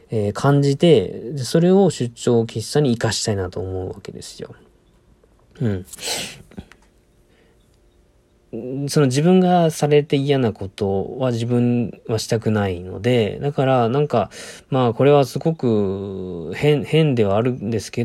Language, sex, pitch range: Japanese, male, 110-145 Hz